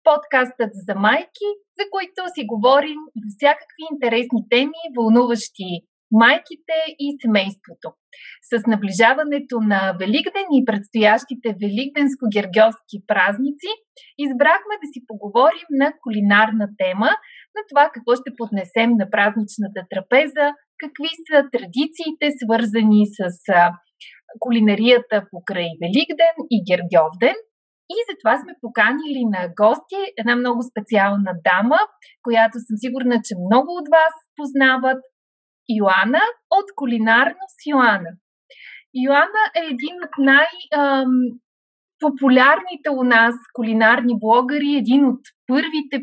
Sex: female